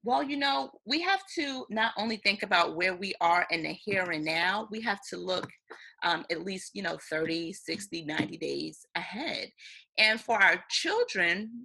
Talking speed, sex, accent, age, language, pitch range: 185 wpm, female, American, 30-49, English, 175-225 Hz